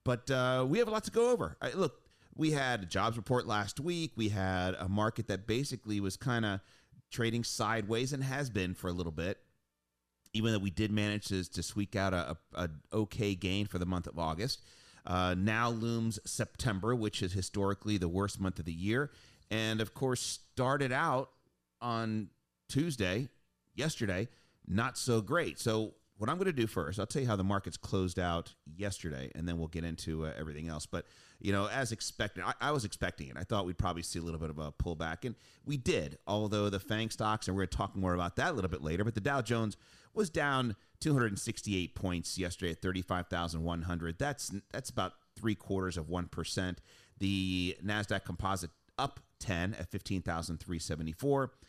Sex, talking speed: male, 195 wpm